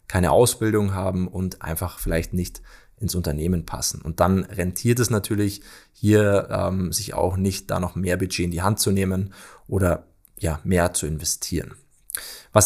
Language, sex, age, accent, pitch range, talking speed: German, male, 20-39, German, 90-105 Hz, 165 wpm